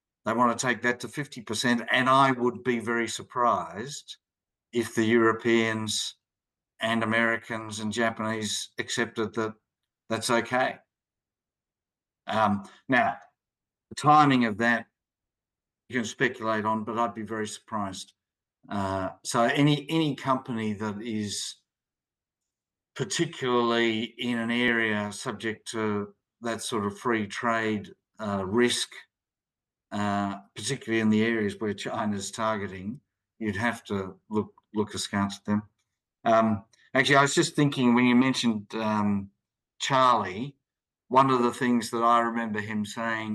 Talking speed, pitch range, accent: 130 wpm, 105-120 Hz, Australian